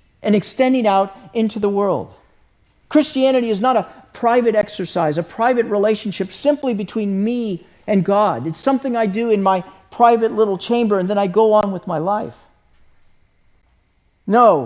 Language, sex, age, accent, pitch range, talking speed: English, male, 50-69, American, 170-230 Hz, 155 wpm